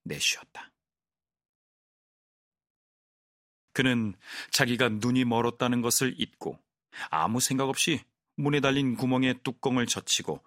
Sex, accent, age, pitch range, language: male, native, 40-59, 110-135 Hz, Korean